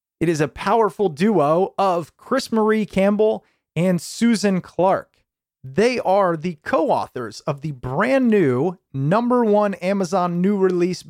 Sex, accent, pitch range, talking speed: male, American, 155-210 Hz, 135 wpm